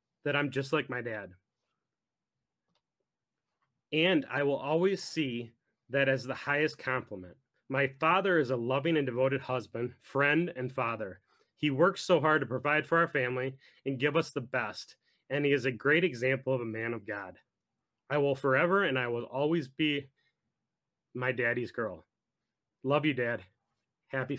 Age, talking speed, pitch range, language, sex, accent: 30-49, 165 wpm, 125-155 Hz, English, male, American